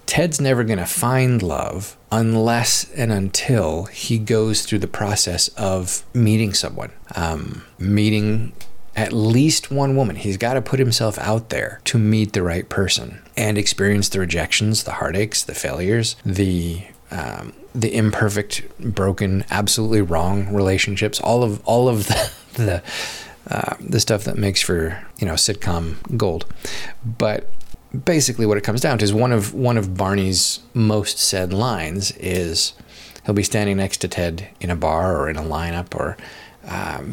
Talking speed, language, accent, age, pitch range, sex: 160 wpm, English, American, 30-49, 95-115 Hz, male